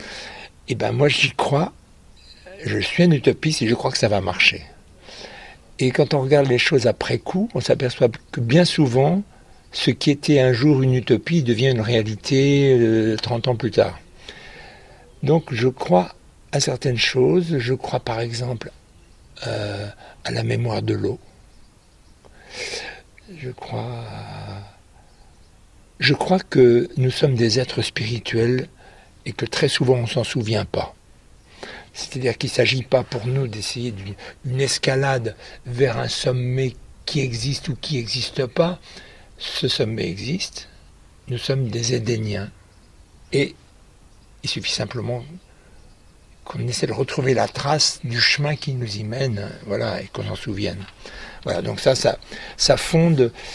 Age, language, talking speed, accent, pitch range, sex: 60-79, French, 150 wpm, French, 110-135 Hz, male